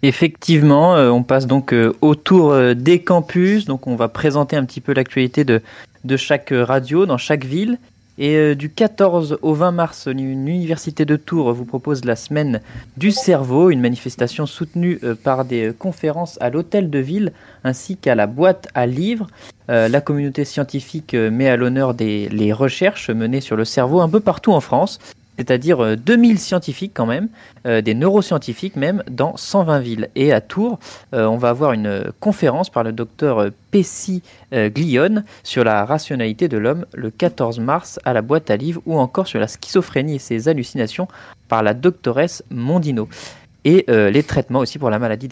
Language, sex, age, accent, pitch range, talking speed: French, male, 30-49, French, 120-170 Hz, 175 wpm